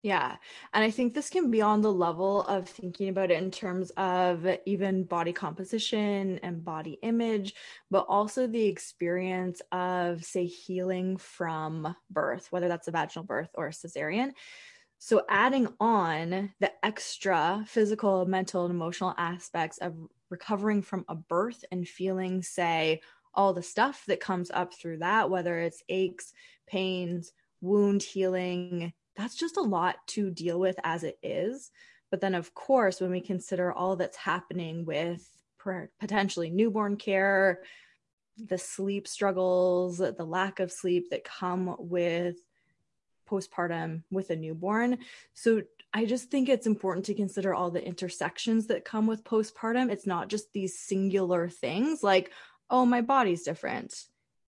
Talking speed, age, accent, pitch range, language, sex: 150 wpm, 20-39, American, 175-210 Hz, English, female